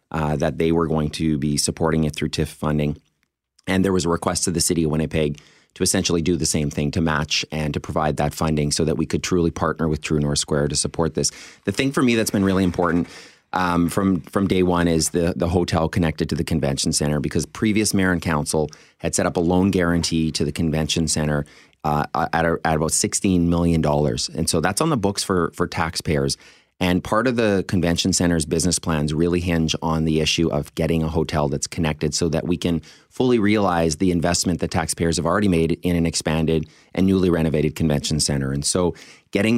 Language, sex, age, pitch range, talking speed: English, male, 30-49, 80-90 Hz, 220 wpm